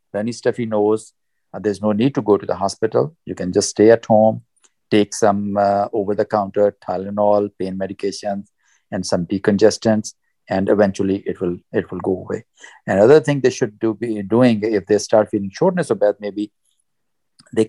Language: English